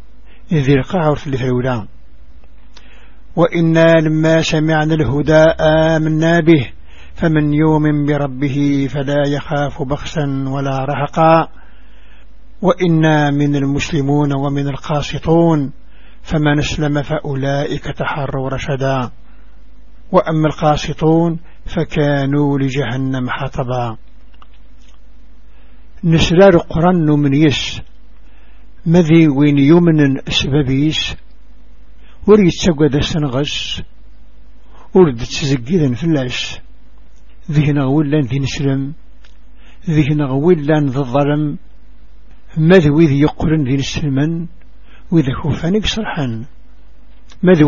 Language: Arabic